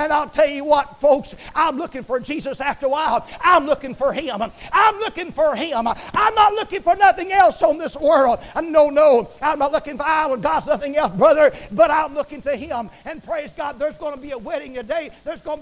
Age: 50-69